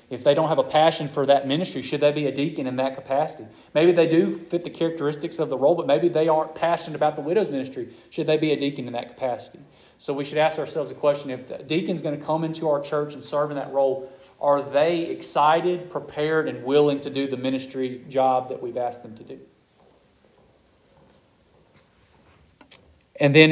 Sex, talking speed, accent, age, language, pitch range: male, 210 wpm, American, 30-49, English, 140-160 Hz